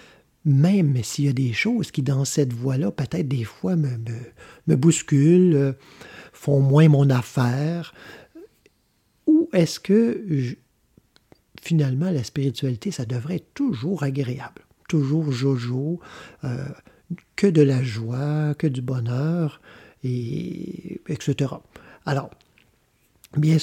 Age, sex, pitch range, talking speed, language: 50-69, male, 135-170 Hz, 120 wpm, French